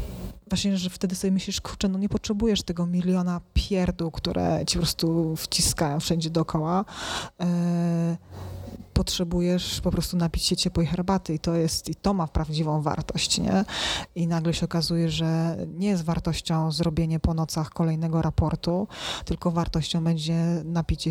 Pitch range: 160-175 Hz